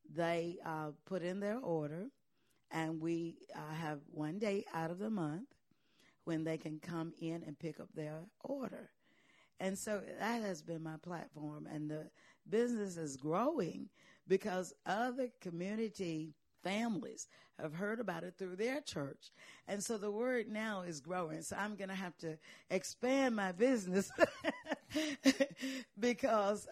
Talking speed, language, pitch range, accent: 150 wpm, English, 160-200 Hz, American